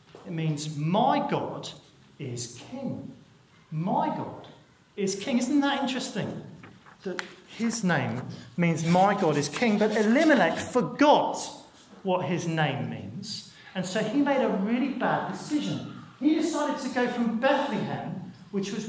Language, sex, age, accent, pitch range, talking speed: English, male, 40-59, British, 180-270 Hz, 140 wpm